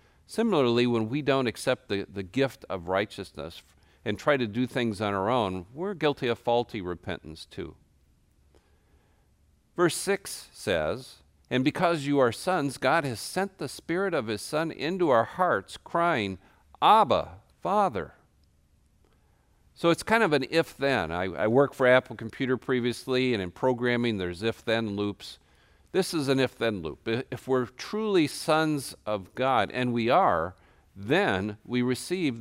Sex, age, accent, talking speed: male, 50-69, American, 150 wpm